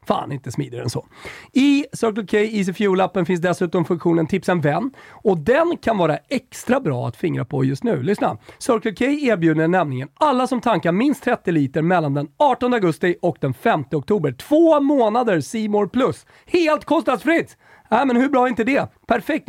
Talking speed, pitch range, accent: 185 wpm, 145-235 Hz, native